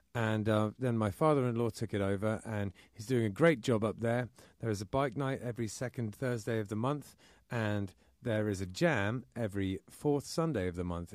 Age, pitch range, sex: 30-49, 105-125 Hz, male